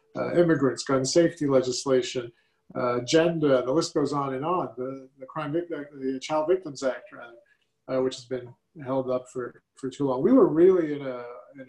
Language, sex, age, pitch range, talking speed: English, male, 40-59, 130-155 Hz, 190 wpm